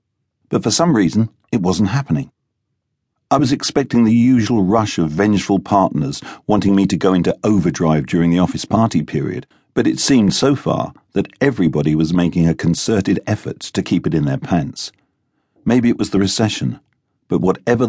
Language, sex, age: English, male, 50-69